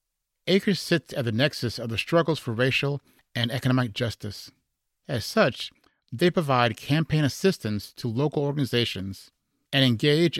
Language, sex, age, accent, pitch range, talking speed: English, male, 50-69, American, 110-145 Hz, 140 wpm